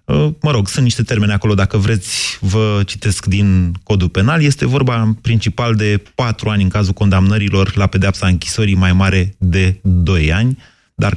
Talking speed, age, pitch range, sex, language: 165 wpm, 30-49, 95-125 Hz, male, Romanian